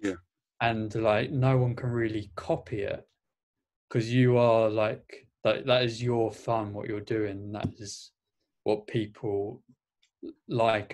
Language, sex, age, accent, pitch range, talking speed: English, male, 20-39, British, 105-130 Hz, 135 wpm